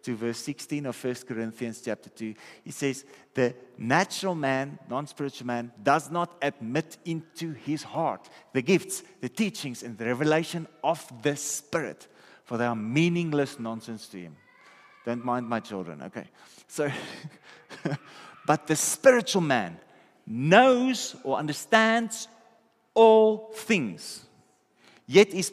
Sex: male